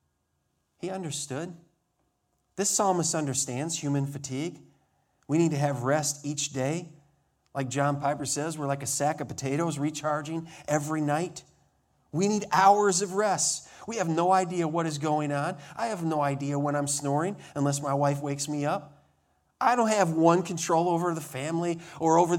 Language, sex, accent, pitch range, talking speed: English, male, American, 105-170 Hz, 170 wpm